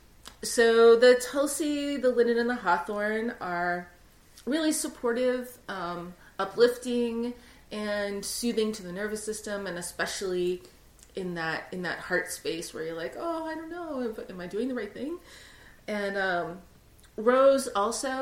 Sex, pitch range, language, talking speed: female, 185-270 Hz, English, 145 wpm